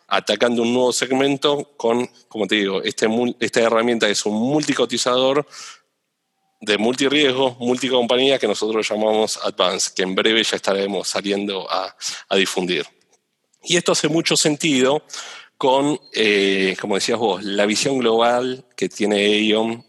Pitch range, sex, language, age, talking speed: 105-130 Hz, male, Spanish, 40-59, 140 wpm